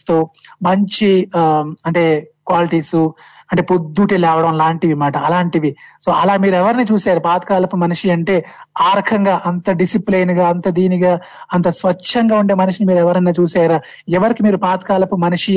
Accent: native